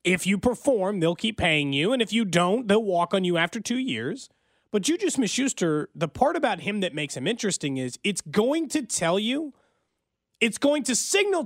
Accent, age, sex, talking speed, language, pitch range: American, 30-49, male, 205 wpm, English, 185-250 Hz